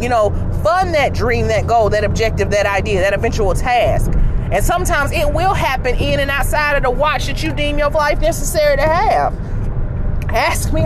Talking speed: 195 wpm